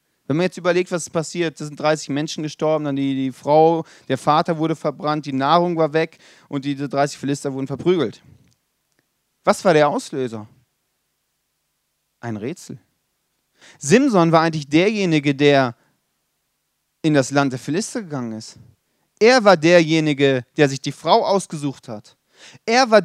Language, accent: German, German